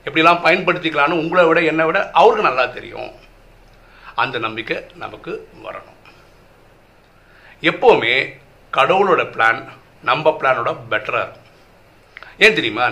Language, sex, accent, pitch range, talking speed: Tamil, male, native, 145-215 Hz, 100 wpm